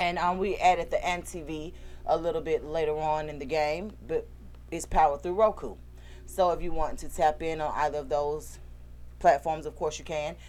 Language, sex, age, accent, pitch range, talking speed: English, female, 30-49, American, 145-195 Hz, 200 wpm